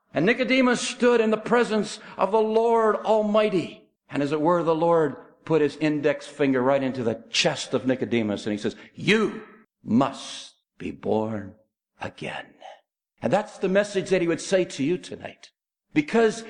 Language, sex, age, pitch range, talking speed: English, male, 60-79, 145-230 Hz, 165 wpm